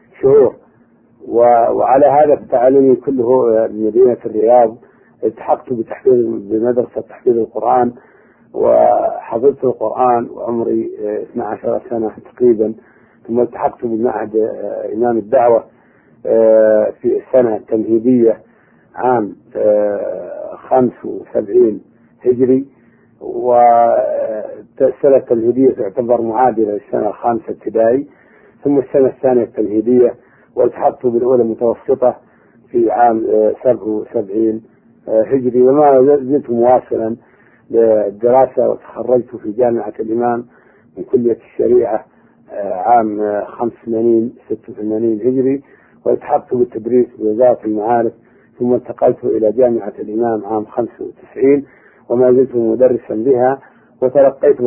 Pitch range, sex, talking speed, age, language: 115-135 Hz, male, 90 wpm, 50-69, Arabic